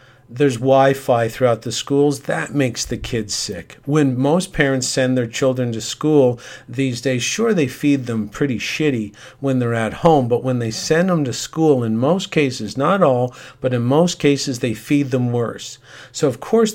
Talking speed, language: 190 wpm, English